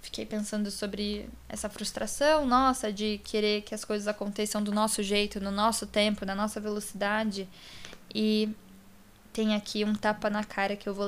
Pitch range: 210-260 Hz